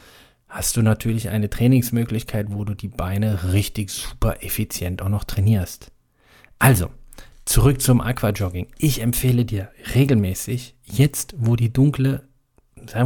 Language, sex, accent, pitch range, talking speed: German, male, German, 105-135 Hz, 130 wpm